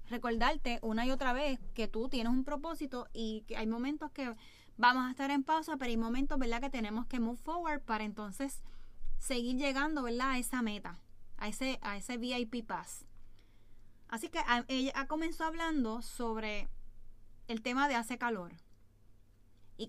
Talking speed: 165 wpm